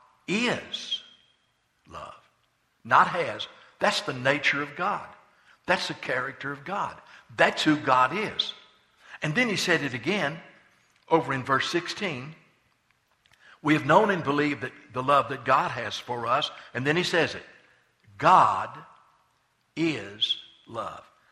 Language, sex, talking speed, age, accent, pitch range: English, male, 135 wpm, 60-79, American, 130-175 Hz